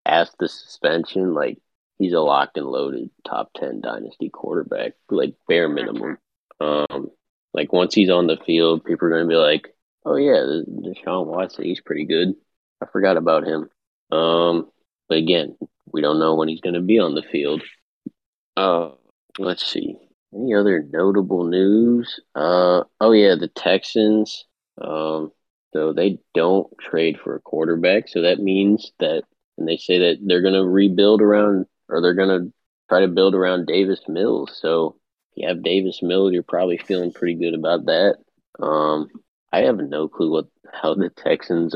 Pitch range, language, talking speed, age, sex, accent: 80-95 Hz, English, 170 wpm, 20-39, male, American